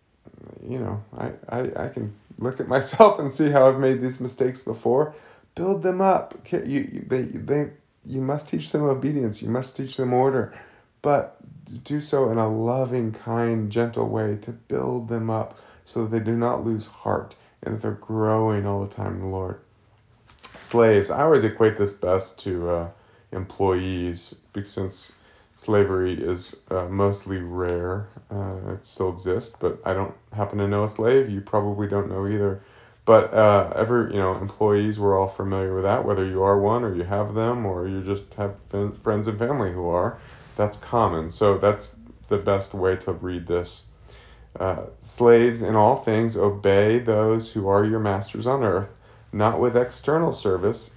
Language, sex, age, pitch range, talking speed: English, male, 30-49, 100-115 Hz, 180 wpm